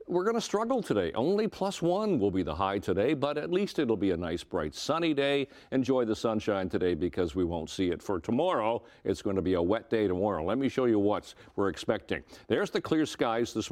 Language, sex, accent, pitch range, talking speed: English, male, American, 95-135 Hz, 235 wpm